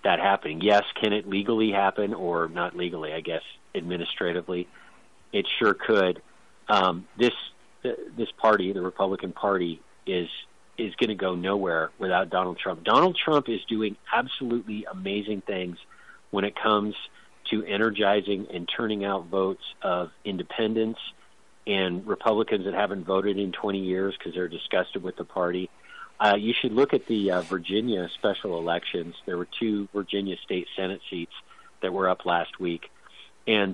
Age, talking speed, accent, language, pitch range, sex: 40-59, 155 wpm, American, English, 90-110 Hz, male